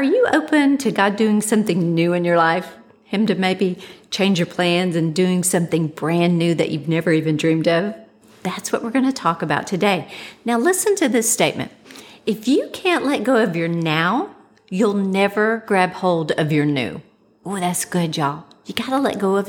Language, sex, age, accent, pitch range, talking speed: English, female, 50-69, American, 175-235 Hz, 205 wpm